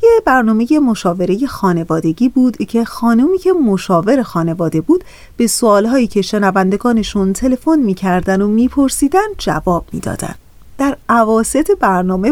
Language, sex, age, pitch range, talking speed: Persian, female, 30-49, 190-285 Hz, 115 wpm